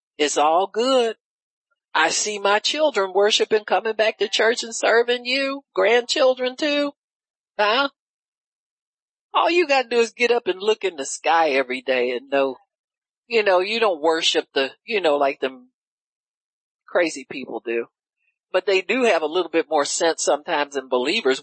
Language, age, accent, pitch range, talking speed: English, 50-69, American, 185-250 Hz, 170 wpm